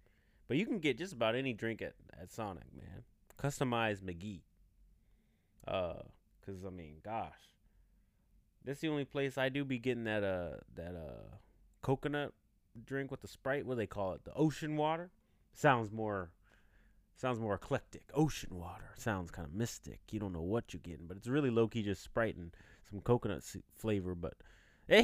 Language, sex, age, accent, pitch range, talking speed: English, male, 30-49, American, 100-145 Hz, 180 wpm